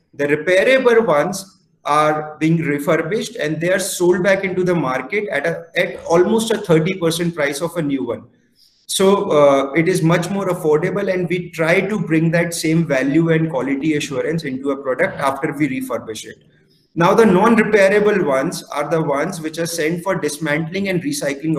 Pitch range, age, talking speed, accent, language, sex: 150-185 Hz, 30-49, 180 wpm, Indian, English, male